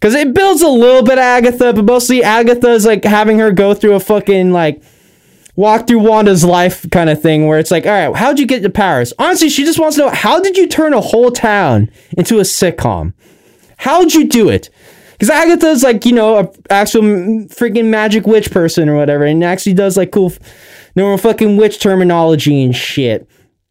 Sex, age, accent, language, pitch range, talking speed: male, 10-29, American, English, 180-230 Hz, 205 wpm